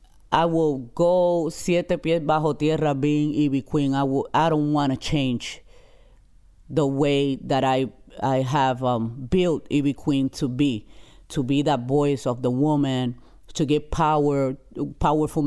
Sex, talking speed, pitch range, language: female, 155 wpm, 135-155 Hz, English